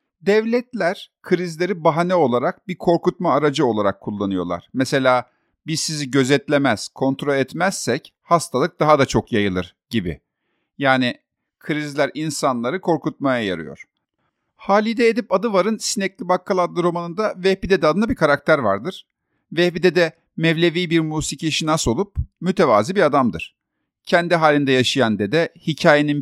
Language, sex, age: Turkish, male, 50-69